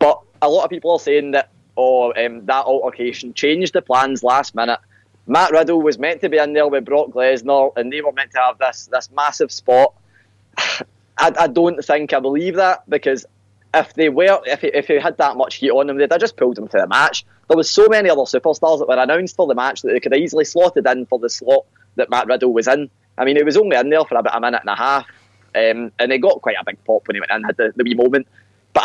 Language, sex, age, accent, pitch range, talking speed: English, male, 20-39, British, 120-155 Hz, 260 wpm